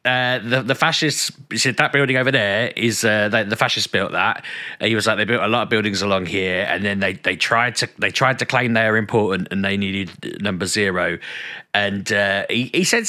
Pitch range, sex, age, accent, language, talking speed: 110-135 Hz, male, 30-49, British, English, 230 wpm